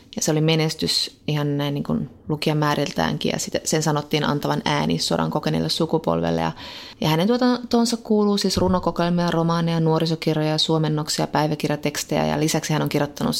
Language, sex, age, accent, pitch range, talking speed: Finnish, female, 20-39, native, 145-165 Hz, 150 wpm